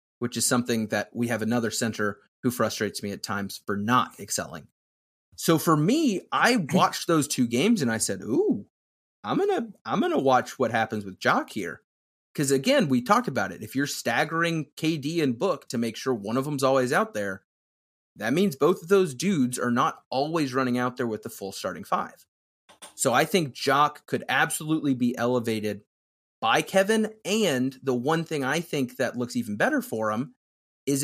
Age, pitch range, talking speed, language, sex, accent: 30-49, 110-155 Hz, 195 wpm, English, male, American